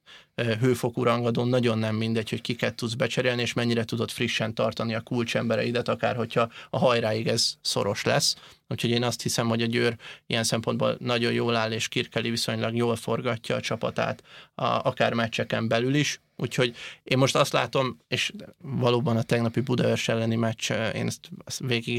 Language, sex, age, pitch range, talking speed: Hungarian, male, 30-49, 115-125 Hz, 170 wpm